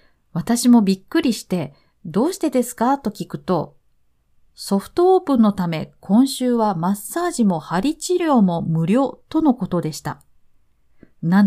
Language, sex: Japanese, female